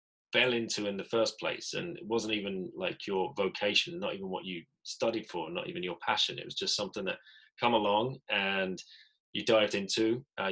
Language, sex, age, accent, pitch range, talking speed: English, male, 20-39, British, 95-110 Hz, 200 wpm